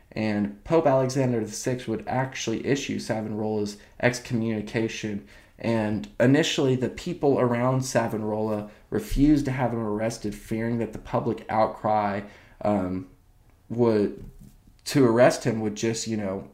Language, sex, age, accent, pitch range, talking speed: English, male, 20-39, American, 105-125 Hz, 125 wpm